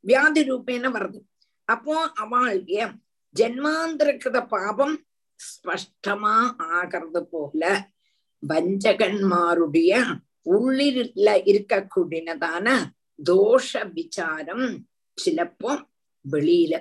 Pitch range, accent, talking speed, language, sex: 180-260 Hz, native, 60 wpm, Tamil, female